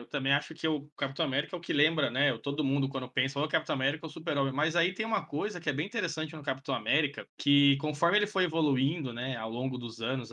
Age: 20-39